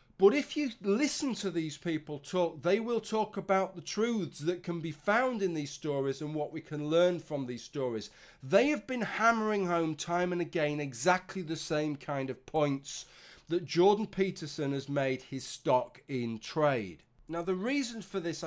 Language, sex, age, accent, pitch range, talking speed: English, male, 30-49, British, 145-195 Hz, 185 wpm